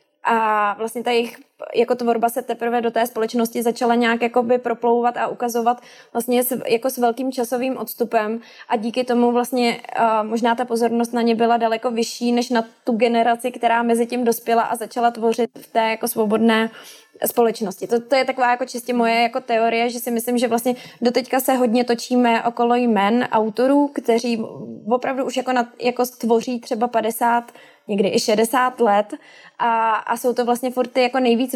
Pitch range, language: 220-245 Hz, Czech